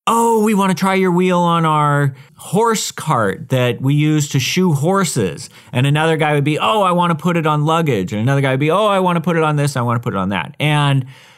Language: English